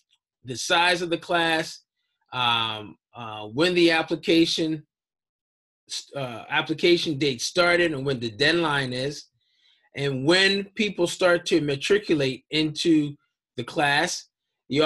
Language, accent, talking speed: English, American, 115 wpm